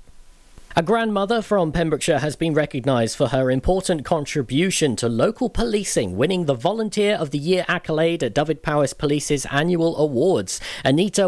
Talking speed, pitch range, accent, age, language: 150 wpm, 130-180 Hz, British, 40-59, English